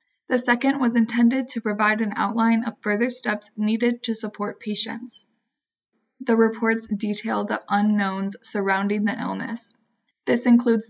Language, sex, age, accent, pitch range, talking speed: English, female, 20-39, American, 210-235 Hz, 140 wpm